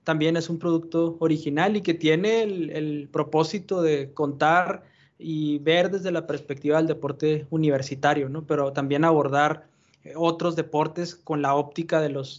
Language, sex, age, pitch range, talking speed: Spanish, male, 20-39, 145-170 Hz, 155 wpm